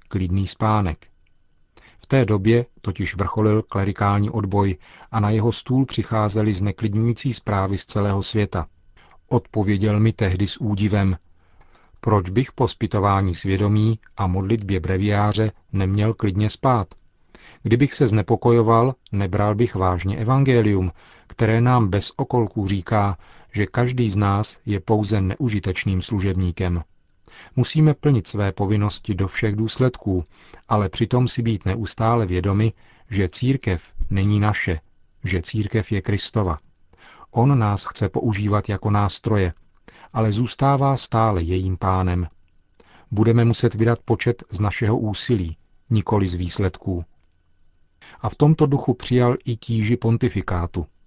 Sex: male